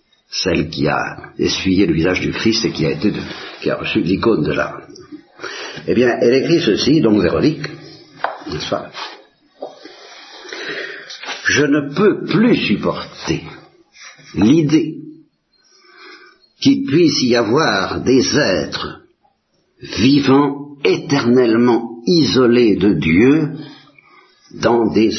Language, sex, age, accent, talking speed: Italian, male, 60-79, French, 110 wpm